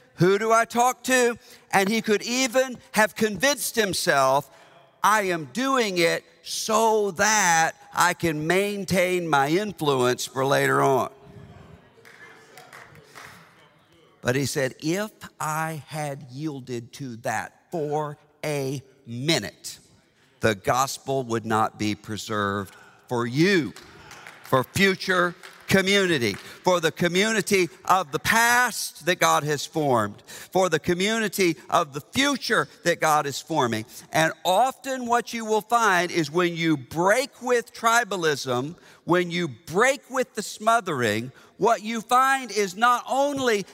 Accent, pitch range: American, 155-235 Hz